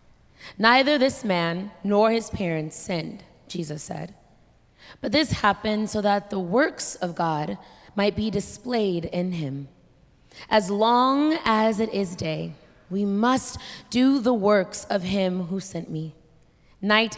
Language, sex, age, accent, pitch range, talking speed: English, female, 20-39, American, 175-225 Hz, 140 wpm